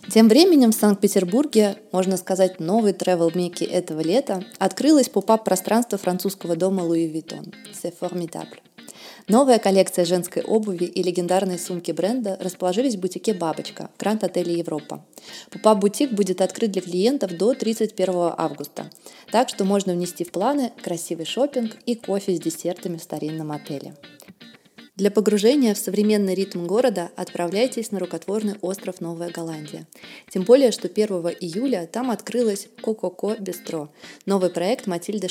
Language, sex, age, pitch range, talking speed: Russian, female, 20-39, 175-220 Hz, 140 wpm